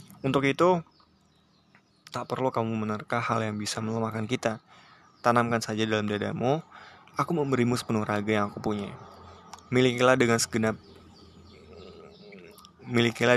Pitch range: 110-130 Hz